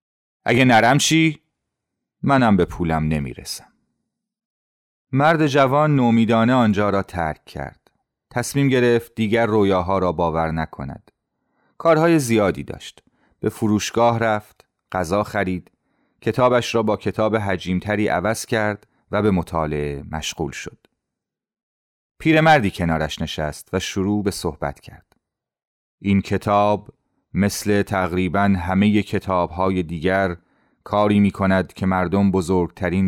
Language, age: Persian, 30-49